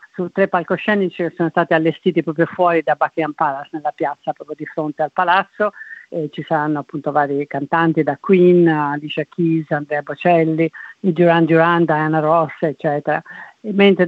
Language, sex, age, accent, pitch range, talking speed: Italian, female, 40-59, native, 155-175 Hz, 160 wpm